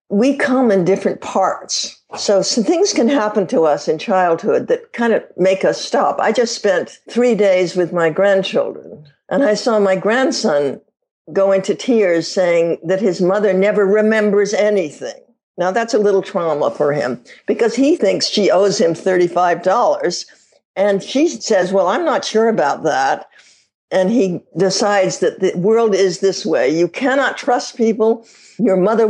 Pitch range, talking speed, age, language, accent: 185-245 Hz, 165 wpm, 60-79, English, American